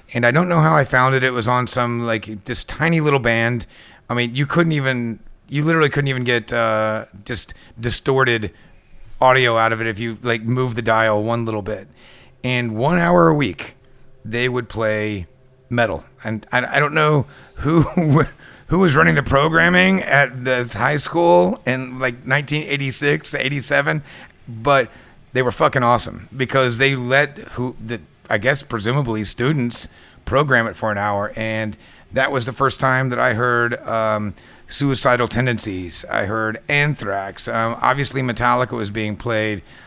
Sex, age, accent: male, 30-49, American